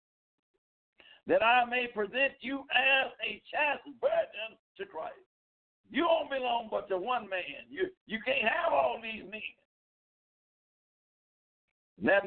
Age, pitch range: 60-79, 180-250 Hz